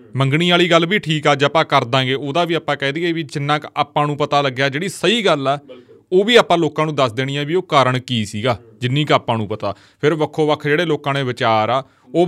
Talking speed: 255 wpm